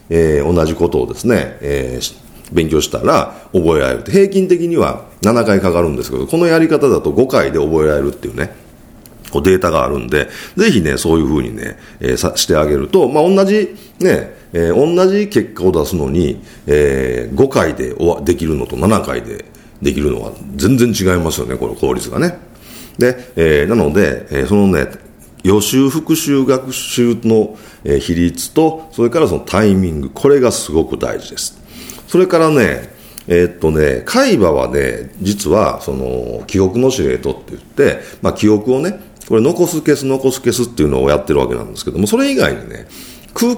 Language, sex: Japanese, male